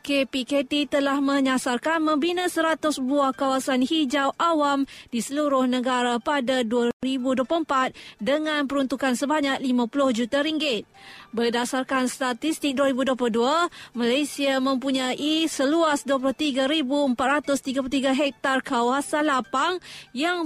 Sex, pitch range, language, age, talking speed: female, 260-300 Hz, Malay, 20-39, 90 wpm